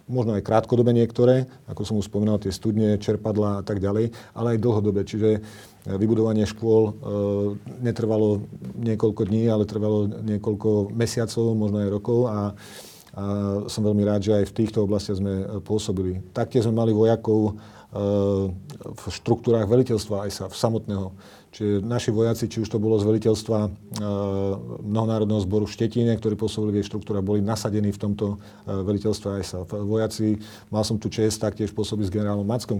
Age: 40-59